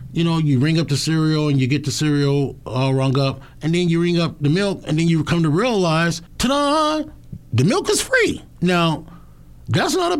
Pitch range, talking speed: 115-150 Hz, 220 wpm